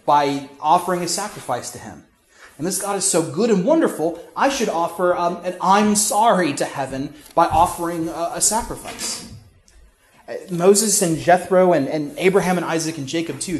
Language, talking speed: English, 170 wpm